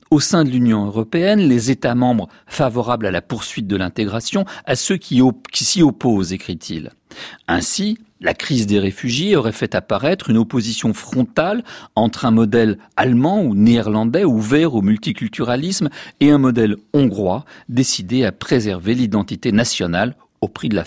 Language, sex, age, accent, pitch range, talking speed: French, male, 50-69, French, 105-135 Hz, 155 wpm